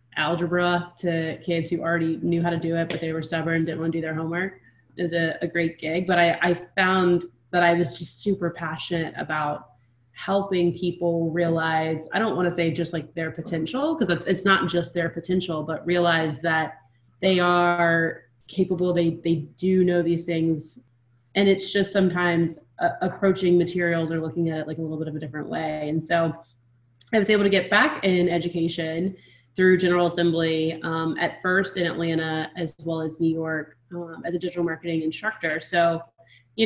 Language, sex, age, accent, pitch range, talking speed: English, female, 20-39, American, 160-175 Hz, 195 wpm